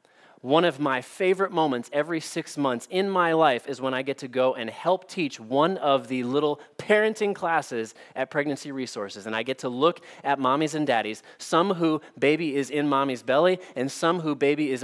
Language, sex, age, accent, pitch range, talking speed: English, male, 30-49, American, 125-155 Hz, 200 wpm